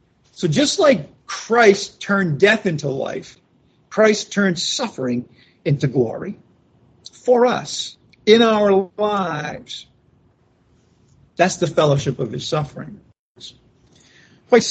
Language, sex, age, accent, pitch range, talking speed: English, male, 50-69, American, 135-195 Hz, 100 wpm